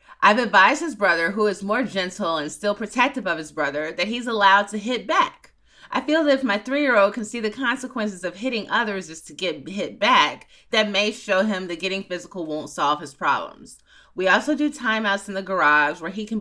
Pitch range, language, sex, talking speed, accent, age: 165-215 Hz, English, female, 215 wpm, American, 30-49